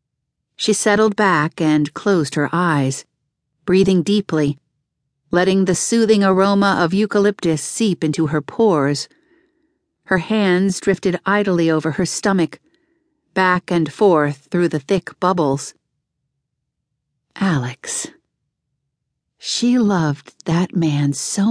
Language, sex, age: English, female, 50-69